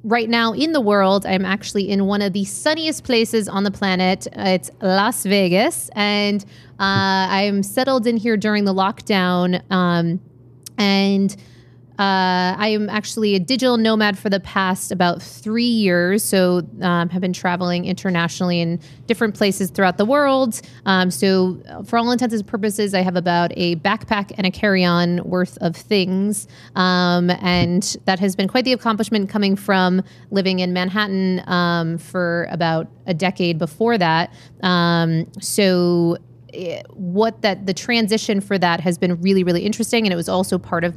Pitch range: 175-210 Hz